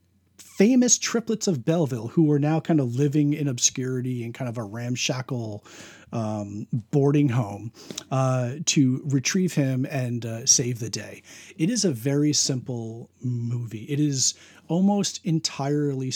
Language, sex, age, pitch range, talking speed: English, male, 40-59, 120-155 Hz, 145 wpm